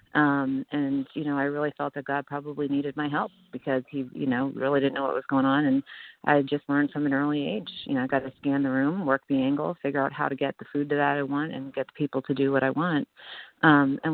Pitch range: 135-150 Hz